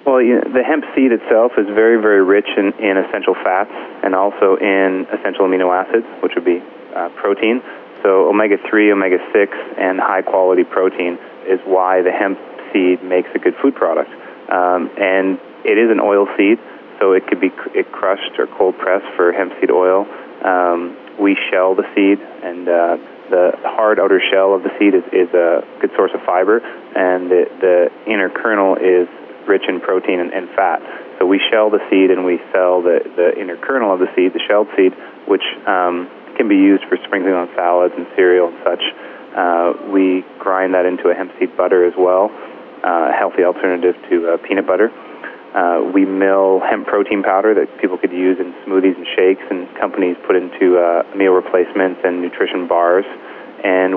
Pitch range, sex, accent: 90-100 Hz, male, American